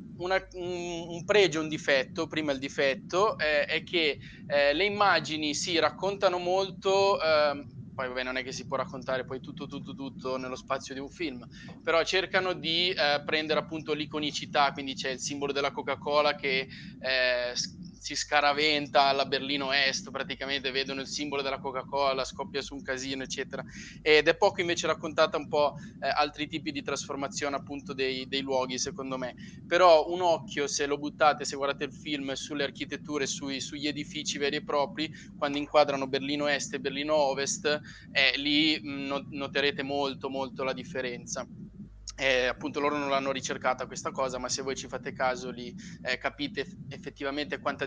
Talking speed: 175 wpm